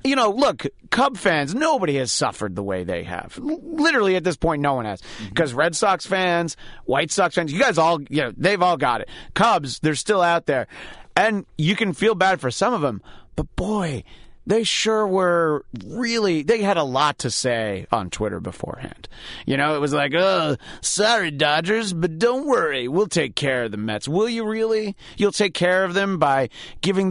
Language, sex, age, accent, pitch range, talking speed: English, male, 30-49, American, 135-185 Hz, 200 wpm